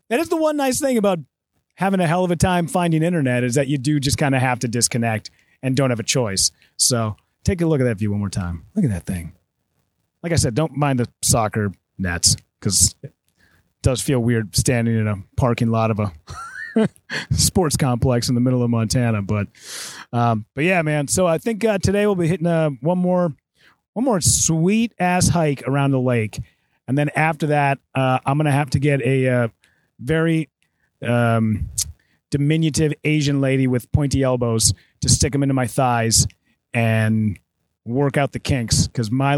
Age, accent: 30-49, American